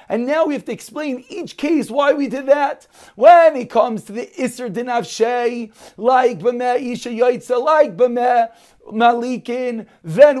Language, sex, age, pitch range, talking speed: English, male, 40-59, 215-255 Hz, 155 wpm